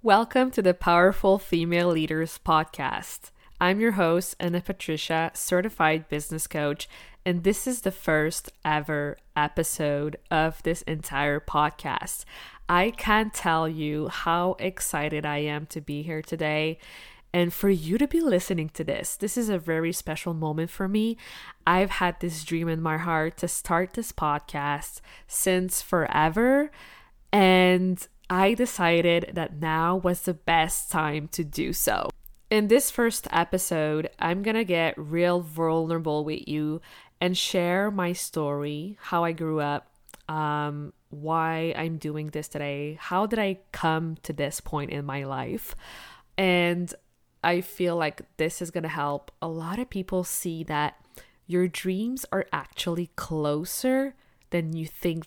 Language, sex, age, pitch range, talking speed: English, female, 20-39, 155-185 Hz, 150 wpm